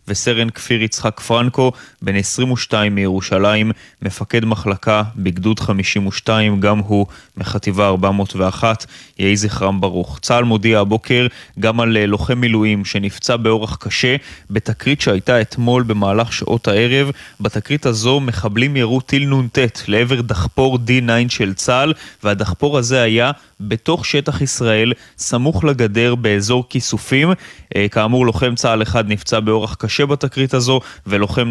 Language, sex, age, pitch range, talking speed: Hebrew, male, 20-39, 105-125 Hz, 120 wpm